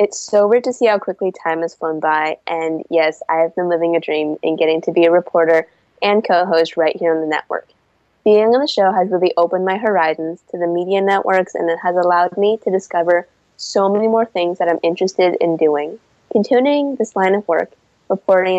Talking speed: 215 wpm